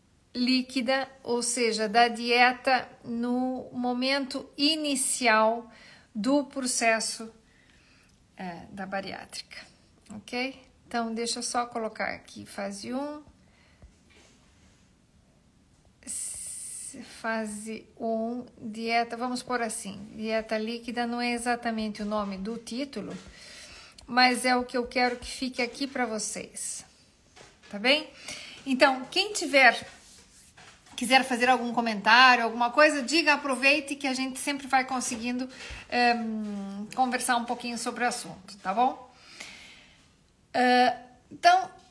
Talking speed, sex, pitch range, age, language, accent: 110 wpm, female, 225-265 Hz, 50-69, Portuguese, Brazilian